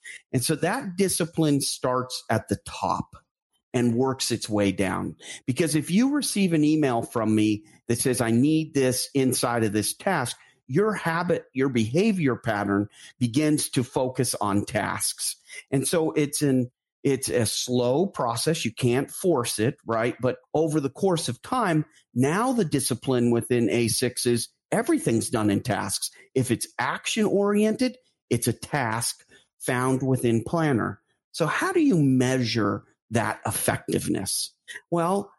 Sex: male